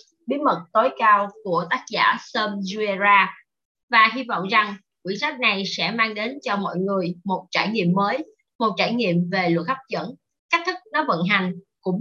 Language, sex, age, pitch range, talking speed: Vietnamese, female, 20-39, 195-275 Hz, 195 wpm